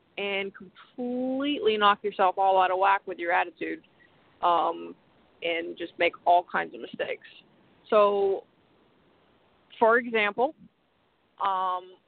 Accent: American